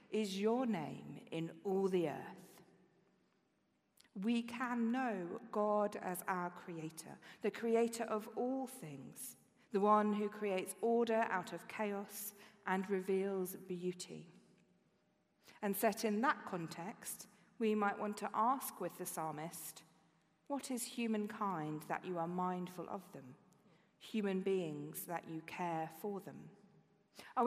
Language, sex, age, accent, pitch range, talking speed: English, female, 40-59, British, 180-230 Hz, 130 wpm